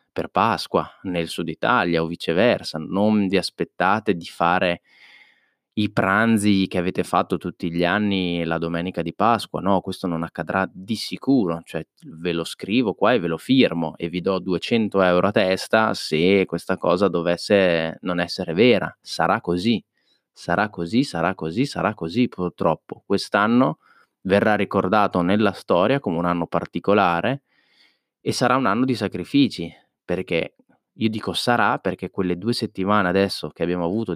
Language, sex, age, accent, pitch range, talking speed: Italian, male, 20-39, native, 85-100 Hz, 155 wpm